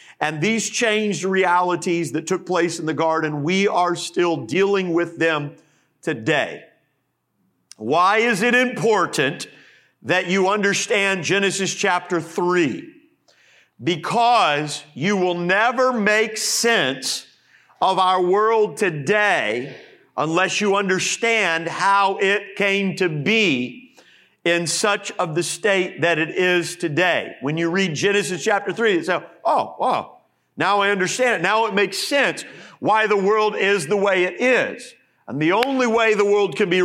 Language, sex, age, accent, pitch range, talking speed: English, male, 50-69, American, 175-215 Hz, 145 wpm